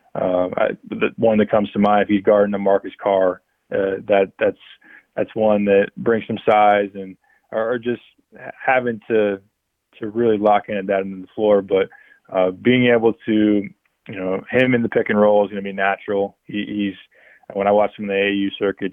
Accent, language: American, English